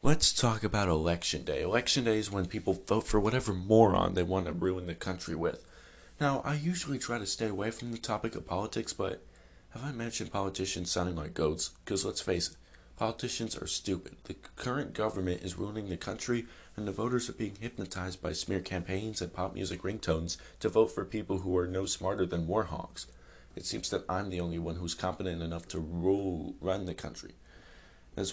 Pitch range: 85-110 Hz